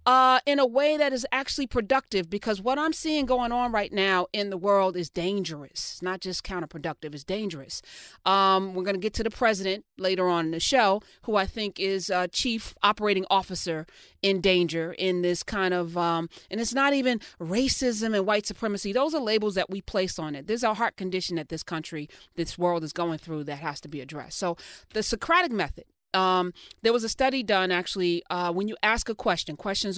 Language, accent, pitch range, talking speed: English, American, 180-255 Hz, 210 wpm